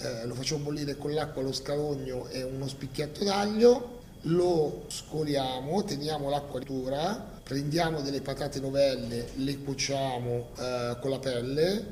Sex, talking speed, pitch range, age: male, 135 wpm, 130-145 Hz, 30-49